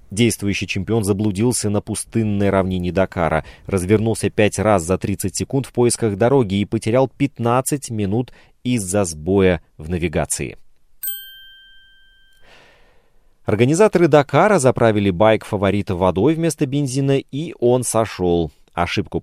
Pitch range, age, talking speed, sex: 90-130 Hz, 30-49, 110 wpm, male